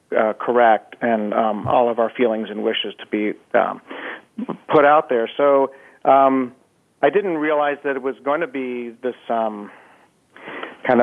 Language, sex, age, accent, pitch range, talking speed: English, male, 40-59, American, 120-140 Hz, 165 wpm